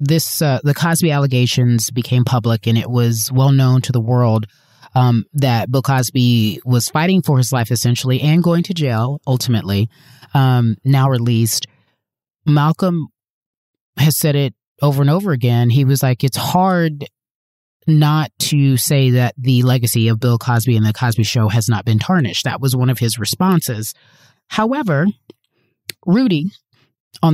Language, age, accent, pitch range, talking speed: English, 30-49, American, 120-150 Hz, 160 wpm